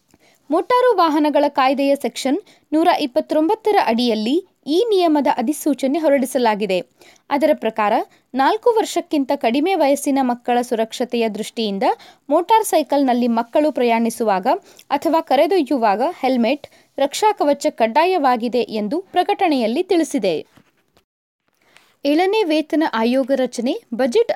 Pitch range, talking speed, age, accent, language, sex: 235-335 Hz, 90 wpm, 20-39, native, Kannada, female